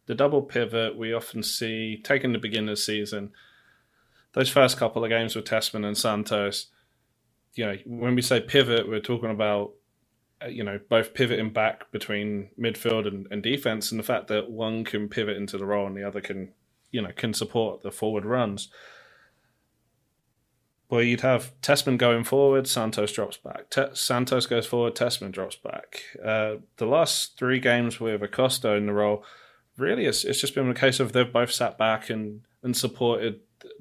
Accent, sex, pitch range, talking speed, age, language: British, male, 105-120 Hz, 175 wpm, 20-39, English